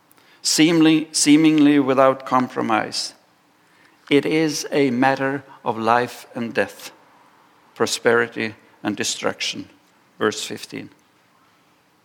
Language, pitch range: English, 115-135 Hz